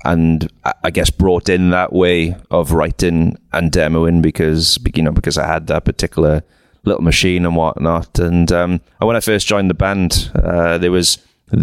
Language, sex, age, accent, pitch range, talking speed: English, male, 30-49, British, 80-95 Hz, 175 wpm